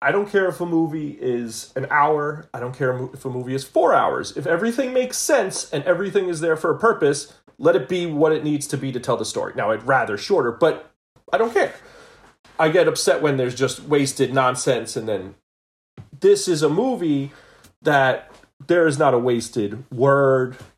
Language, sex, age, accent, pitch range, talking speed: English, male, 30-49, American, 130-170 Hz, 200 wpm